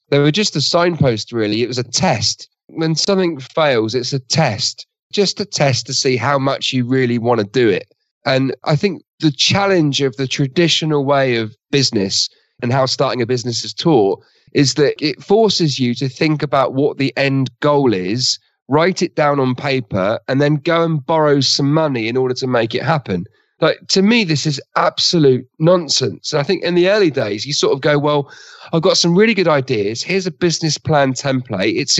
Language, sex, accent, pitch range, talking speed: English, male, British, 125-165 Hz, 205 wpm